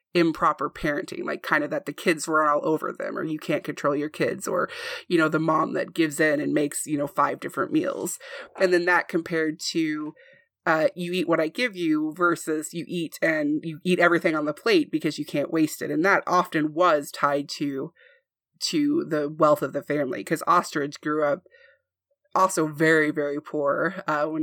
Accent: American